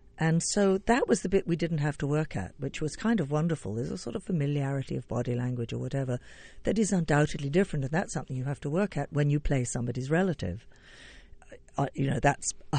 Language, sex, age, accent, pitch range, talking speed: English, female, 50-69, British, 130-175 Hz, 230 wpm